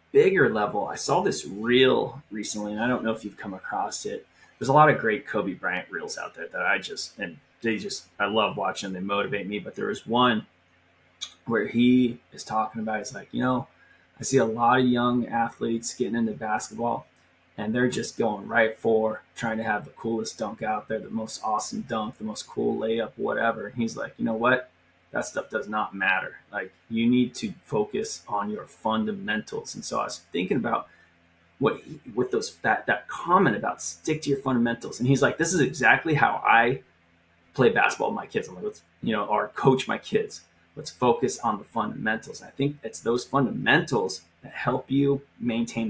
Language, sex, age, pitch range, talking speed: English, male, 20-39, 110-135 Hz, 205 wpm